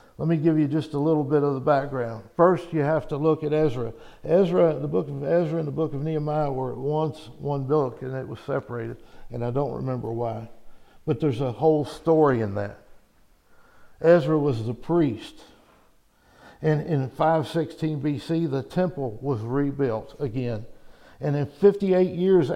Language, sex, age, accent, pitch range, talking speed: English, male, 60-79, American, 130-160 Hz, 175 wpm